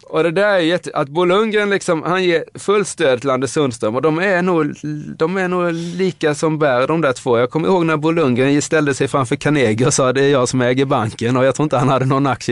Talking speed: 255 wpm